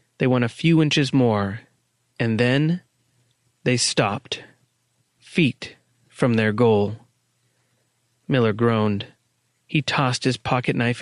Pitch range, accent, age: 120-145 Hz, American, 30-49